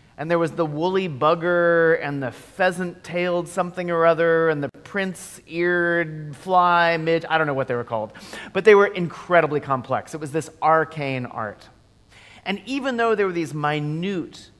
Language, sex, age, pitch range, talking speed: English, male, 30-49, 120-170 Hz, 170 wpm